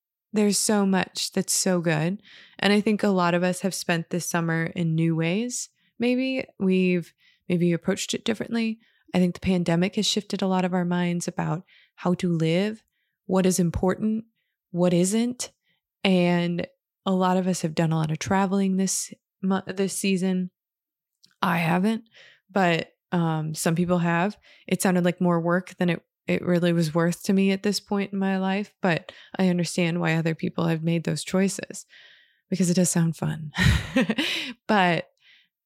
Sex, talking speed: female, 170 wpm